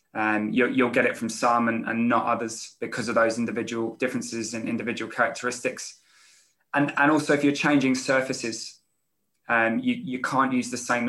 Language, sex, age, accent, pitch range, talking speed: English, male, 20-39, British, 120-145 Hz, 175 wpm